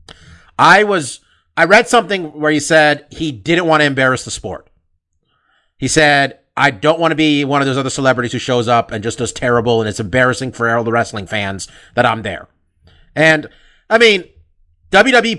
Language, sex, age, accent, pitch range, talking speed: English, male, 30-49, American, 105-150 Hz, 190 wpm